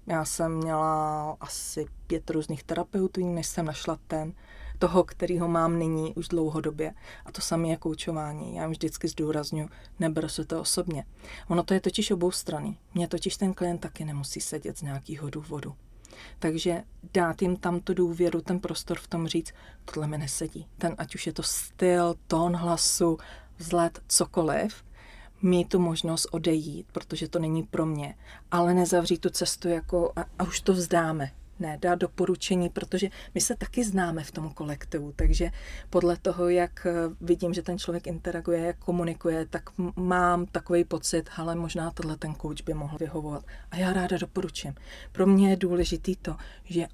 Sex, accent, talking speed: female, native, 165 wpm